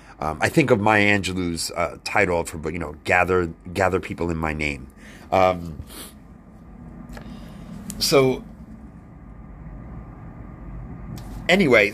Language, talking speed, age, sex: English, 105 wpm, 30-49, male